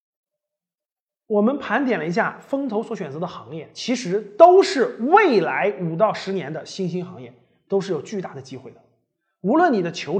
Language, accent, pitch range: Chinese, native, 165-240 Hz